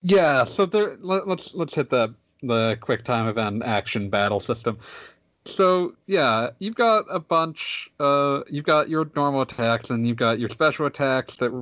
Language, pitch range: English, 115-150 Hz